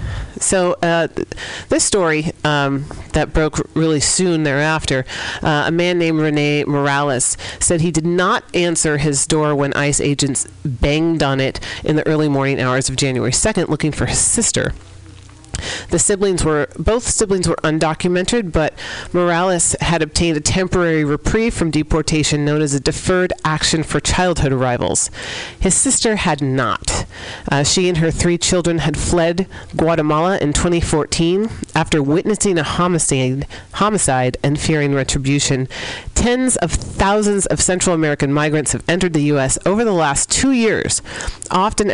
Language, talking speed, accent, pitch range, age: English, 150 wpm, American, 140-175 Hz, 40-59